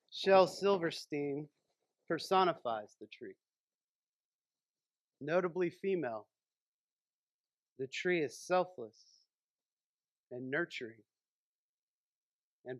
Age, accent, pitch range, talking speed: 40-59, American, 140-180 Hz, 65 wpm